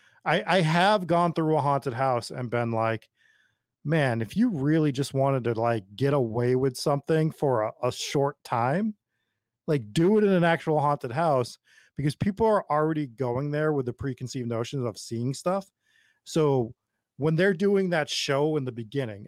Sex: male